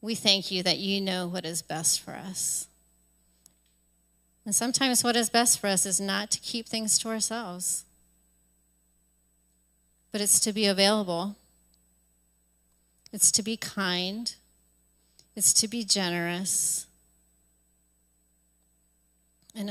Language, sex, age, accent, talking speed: English, female, 30-49, American, 120 wpm